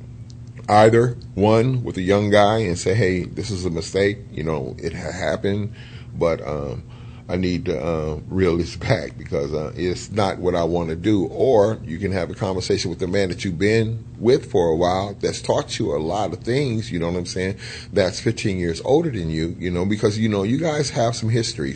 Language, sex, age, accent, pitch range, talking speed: English, male, 30-49, American, 95-120 Hz, 220 wpm